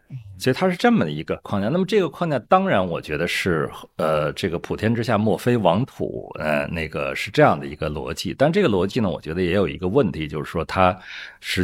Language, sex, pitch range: Chinese, male, 90-120 Hz